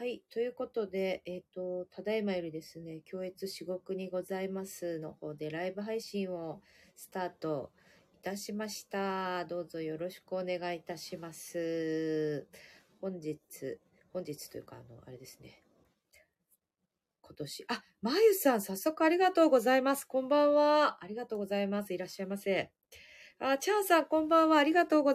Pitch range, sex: 155-210 Hz, female